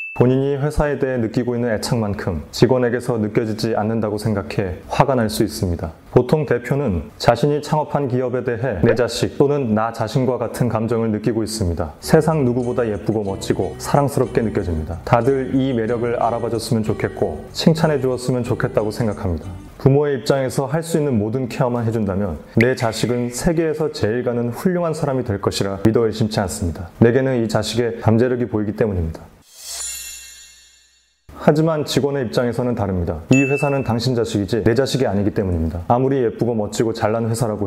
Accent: native